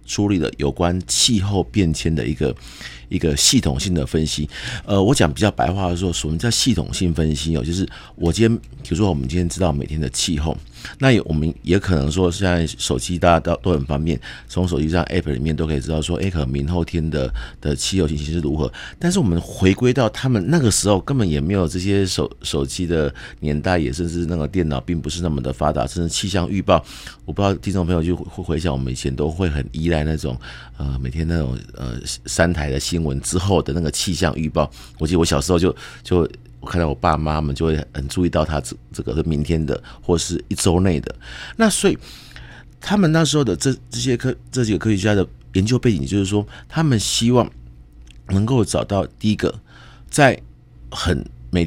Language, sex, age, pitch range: Chinese, male, 50-69, 75-95 Hz